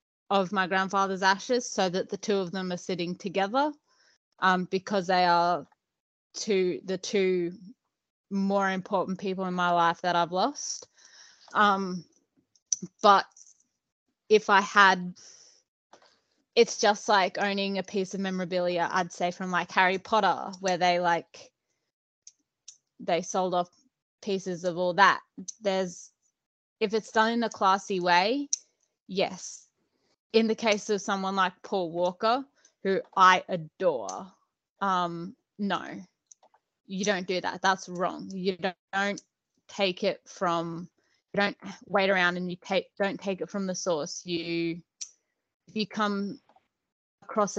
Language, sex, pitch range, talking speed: English, female, 180-200 Hz, 140 wpm